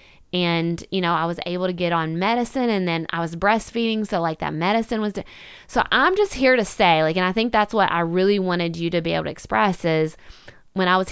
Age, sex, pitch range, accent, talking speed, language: 20-39, female, 160-185 Hz, American, 250 wpm, English